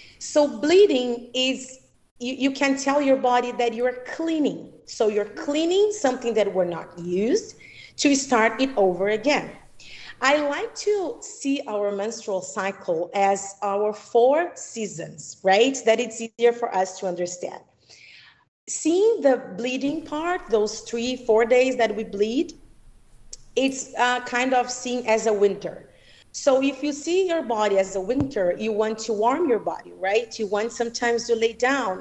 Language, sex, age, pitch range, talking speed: English, female, 40-59, 215-270 Hz, 160 wpm